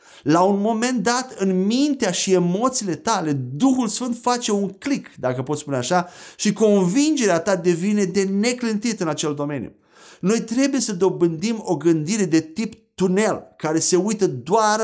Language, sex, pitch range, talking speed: Romanian, male, 160-220 Hz, 160 wpm